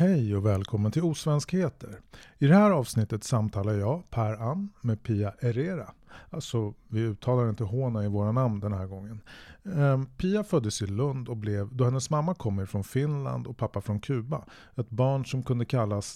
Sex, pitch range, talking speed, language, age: male, 110-150 Hz, 180 wpm, English, 30-49